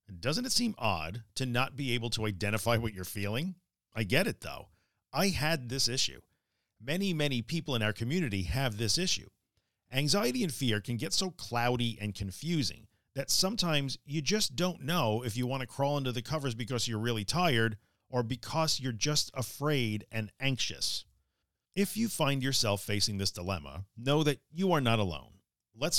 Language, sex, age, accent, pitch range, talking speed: English, male, 40-59, American, 110-155 Hz, 180 wpm